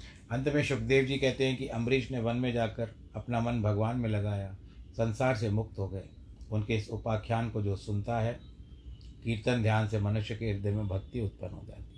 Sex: male